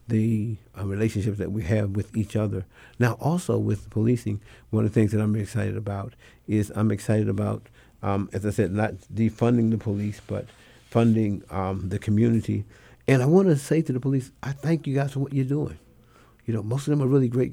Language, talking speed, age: English, 210 wpm, 50-69